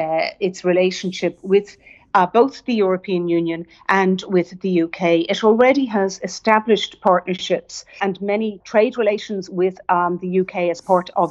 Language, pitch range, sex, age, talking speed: English, 170-205 Hz, female, 50-69, 155 wpm